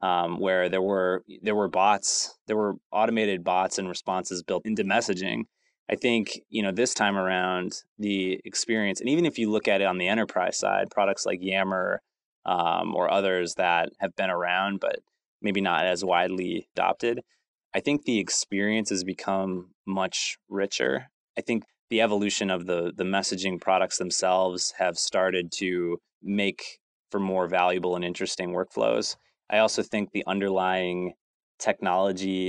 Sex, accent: male, American